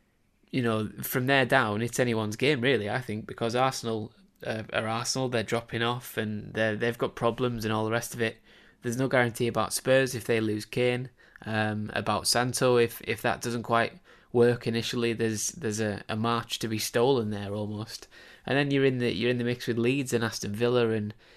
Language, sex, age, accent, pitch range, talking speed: English, male, 10-29, British, 110-120 Hz, 210 wpm